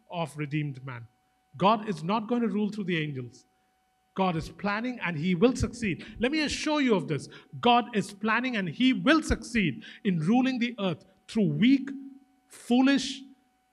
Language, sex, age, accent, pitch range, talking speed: English, male, 50-69, Indian, 190-250 Hz, 170 wpm